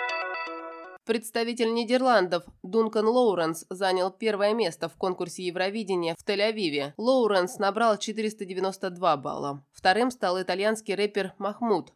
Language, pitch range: Russian, 170-220 Hz